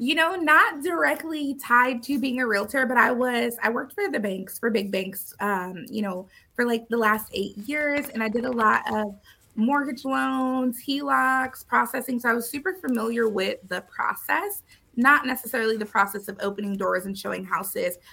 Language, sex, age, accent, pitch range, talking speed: English, female, 20-39, American, 215-265 Hz, 190 wpm